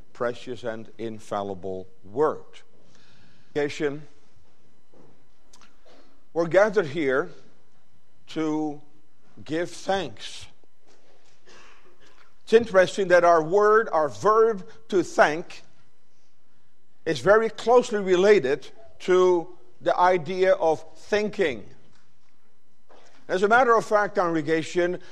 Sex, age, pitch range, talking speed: male, 50-69, 160-220 Hz, 80 wpm